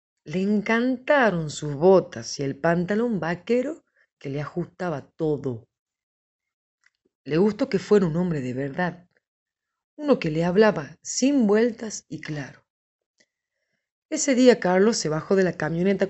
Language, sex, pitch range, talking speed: Spanish, female, 155-210 Hz, 135 wpm